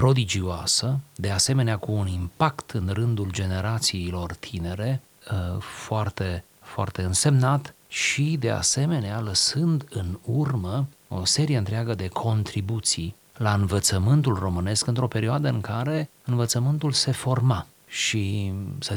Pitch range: 90-120 Hz